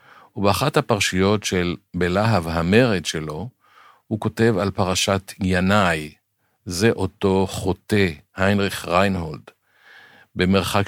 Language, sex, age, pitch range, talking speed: Hebrew, male, 50-69, 85-105 Hz, 95 wpm